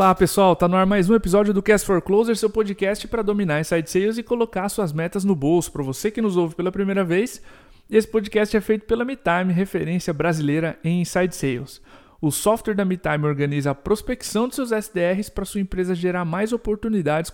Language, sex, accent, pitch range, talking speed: Portuguese, male, Brazilian, 160-210 Hz, 205 wpm